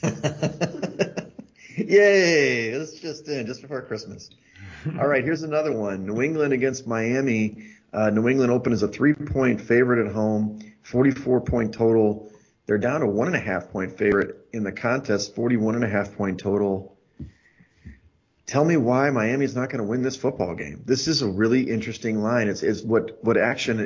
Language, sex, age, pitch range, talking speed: English, male, 30-49, 105-135 Hz, 175 wpm